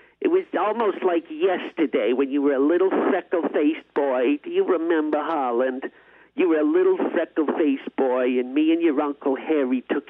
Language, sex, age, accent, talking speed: English, male, 50-69, American, 170 wpm